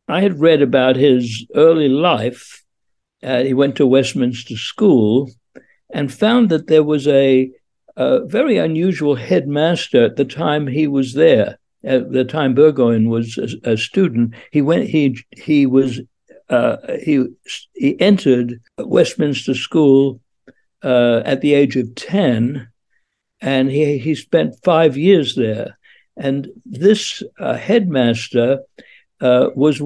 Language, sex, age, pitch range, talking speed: English, male, 60-79, 130-165 Hz, 135 wpm